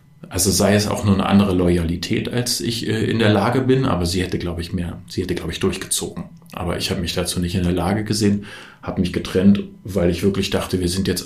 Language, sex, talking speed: German, male, 240 wpm